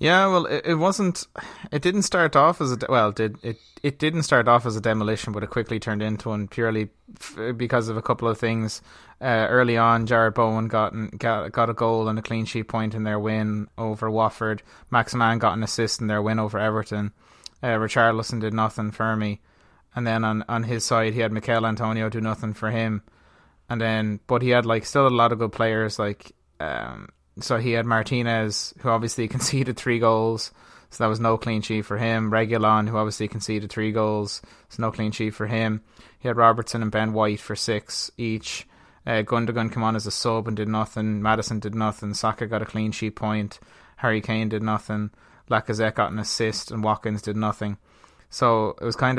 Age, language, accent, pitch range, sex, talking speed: 20-39, English, Irish, 110-115 Hz, male, 215 wpm